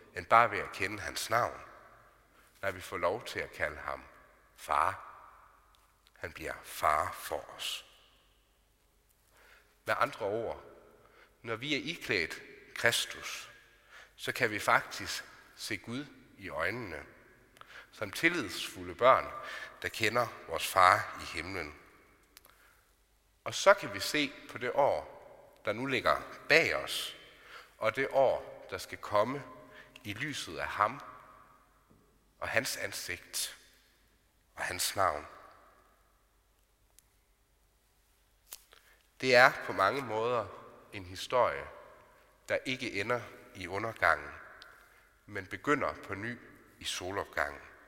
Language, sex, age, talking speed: Danish, male, 60-79, 115 wpm